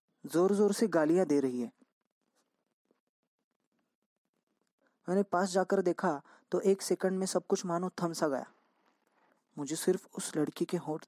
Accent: native